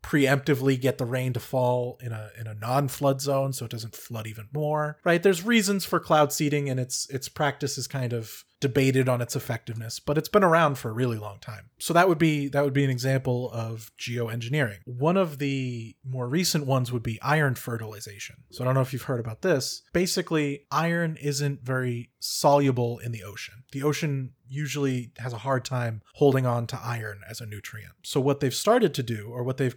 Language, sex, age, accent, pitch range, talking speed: English, male, 30-49, American, 120-145 Hz, 210 wpm